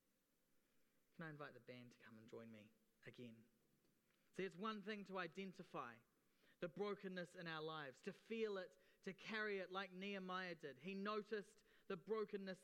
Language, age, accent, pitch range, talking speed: English, 30-49, Australian, 180-220 Hz, 165 wpm